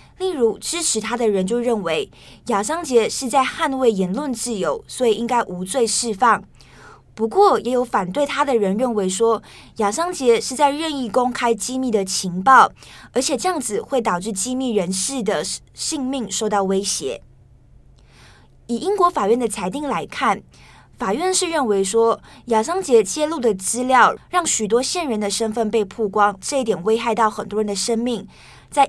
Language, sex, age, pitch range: Chinese, female, 20-39, 210-270 Hz